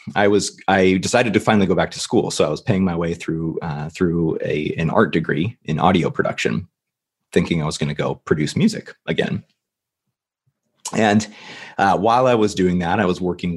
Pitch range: 80-95 Hz